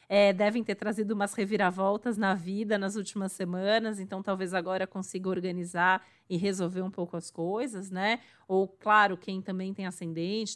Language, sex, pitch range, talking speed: Portuguese, female, 195-230 Hz, 160 wpm